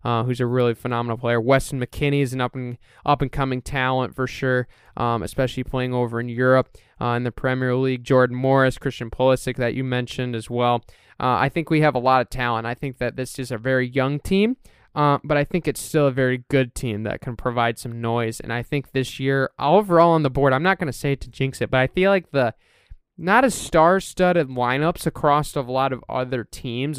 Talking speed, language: 235 wpm, English